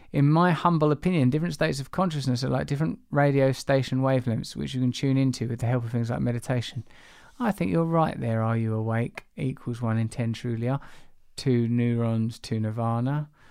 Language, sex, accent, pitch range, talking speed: English, male, British, 125-150 Hz, 195 wpm